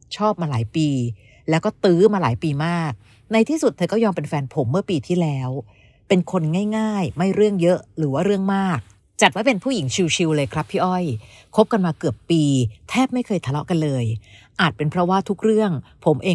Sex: female